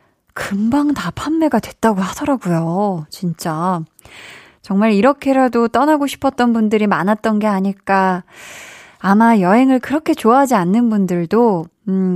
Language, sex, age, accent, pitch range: Korean, female, 20-39, native, 190-250 Hz